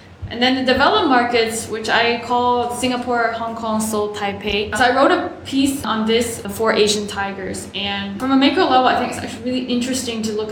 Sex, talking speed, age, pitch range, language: female, 205 wpm, 10-29, 200-235 Hz, English